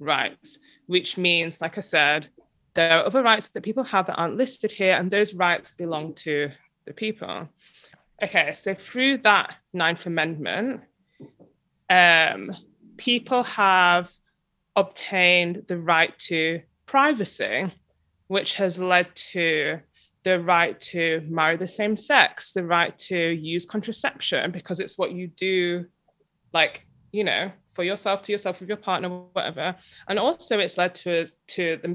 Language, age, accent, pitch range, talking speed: English, 20-39, British, 175-230 Hz, 145 wpm